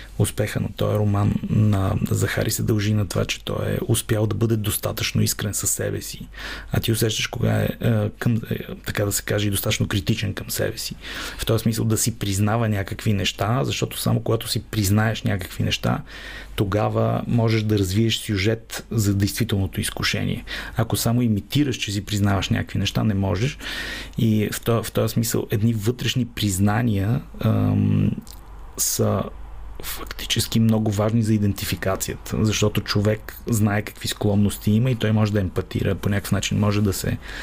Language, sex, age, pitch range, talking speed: Bulgarian, male, 30-49, 100-115 Hz, 165 wpm